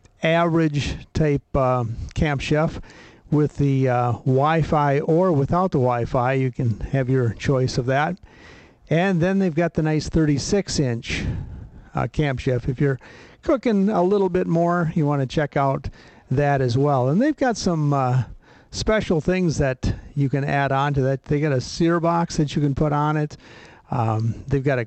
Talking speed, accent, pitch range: 180 wpm, American, 130-160 Hz